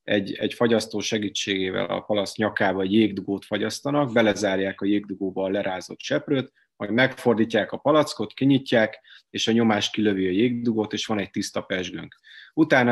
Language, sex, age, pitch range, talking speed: Hungarian, male, 30-49, 105-125 Hz, 155 wpm